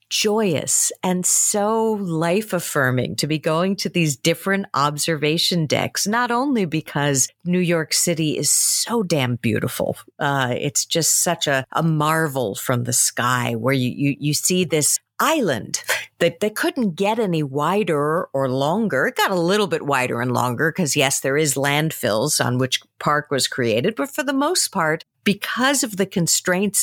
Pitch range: 145-210 Hz